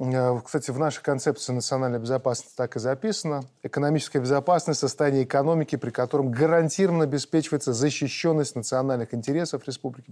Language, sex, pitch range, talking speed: Russian, male, 125-155 Hz, 125 wpm